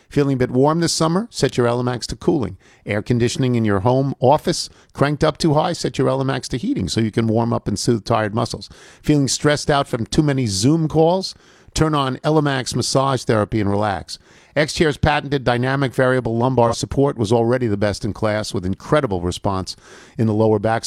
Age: 50-69